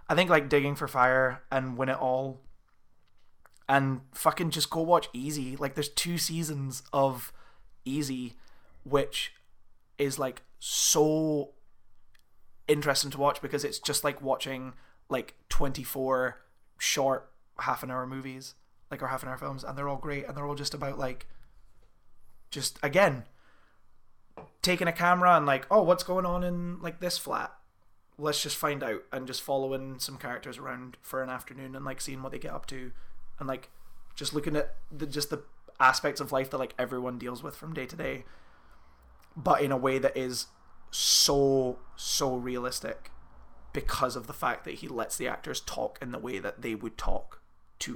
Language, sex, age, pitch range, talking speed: English, male, 20-39, 125-145 Hz, 175 wpm